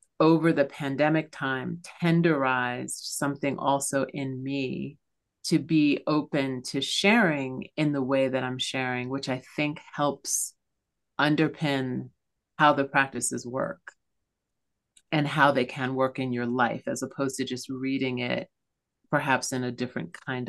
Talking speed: 140 wpm